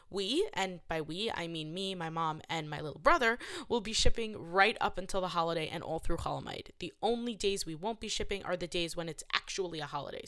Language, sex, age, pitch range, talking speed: English, female, 20-39, 170-215 Hz, 235 wpm